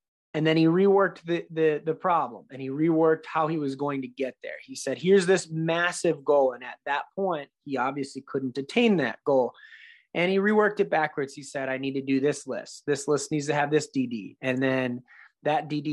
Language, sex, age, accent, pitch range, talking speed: English, male, 30-49, American, 140-180 Hz, 220 wpm